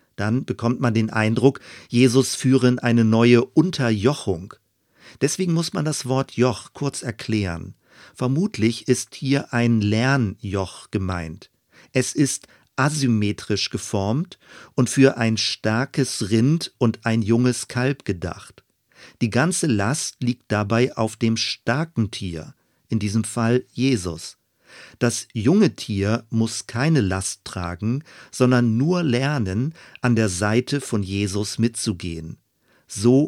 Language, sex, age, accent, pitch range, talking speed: German, male, 40-59, German, 105-130 Hz, 125 wpm